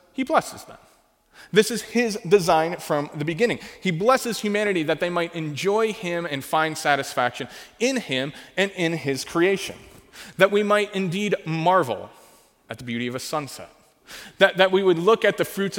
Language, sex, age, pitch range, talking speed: English, male, 30-49, 150-205 Hz, 175 wpm